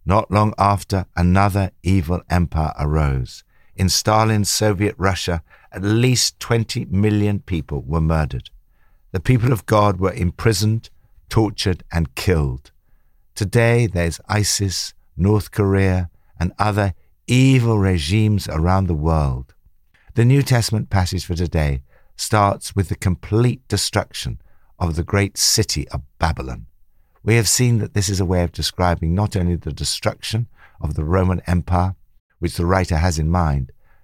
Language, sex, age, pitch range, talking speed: English, male, 60-79, 80-105 Hz, 140 wpm